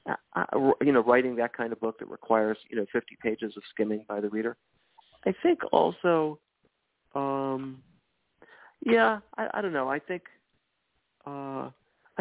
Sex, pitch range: male, 105-140 Hz